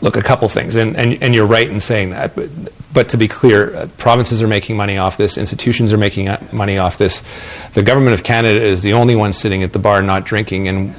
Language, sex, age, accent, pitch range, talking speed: English, male, 40-59, American, 95-110 Hz, 240 wpm